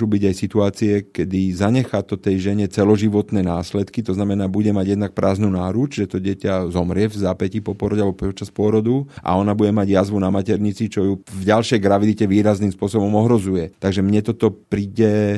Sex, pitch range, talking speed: male, 95-105 Hz, 185 wpm